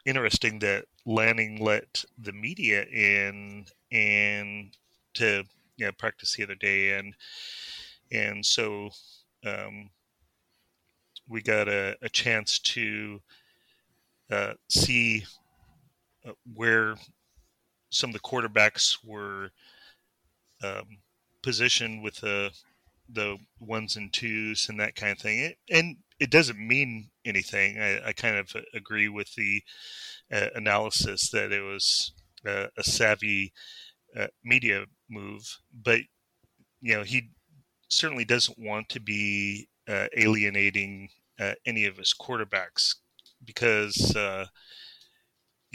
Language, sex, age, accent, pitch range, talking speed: English, male, 30-49, American, 100-115 Hz, 115 wpm